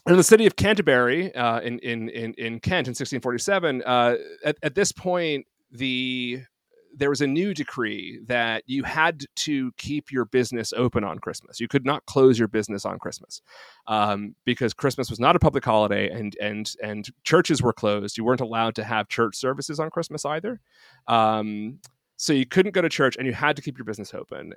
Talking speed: 200 wpm